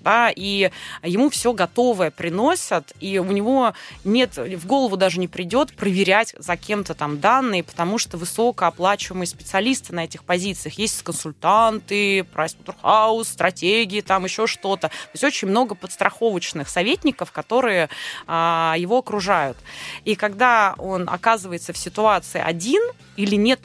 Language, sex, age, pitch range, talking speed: Russian, female, 20-39, 175-225 Hz, 135 wpm